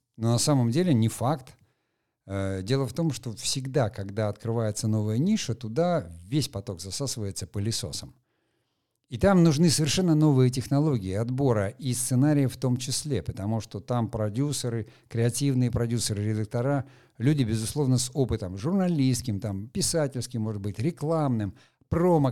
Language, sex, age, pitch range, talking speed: Russian, male, 50-69, 105-135 Hz, 130 wpm